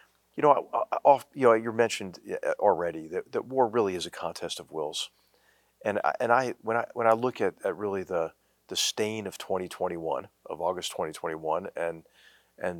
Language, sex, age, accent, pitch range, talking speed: English, male, 50-69, American, 85-105 Hz, 210 wpm